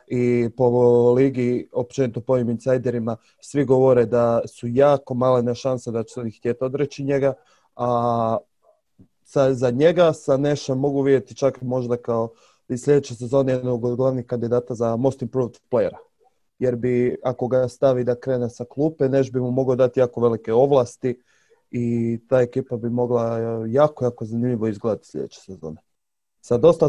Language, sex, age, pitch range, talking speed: Croatian, male, 20-39, 120-135 Hz, 165 wpm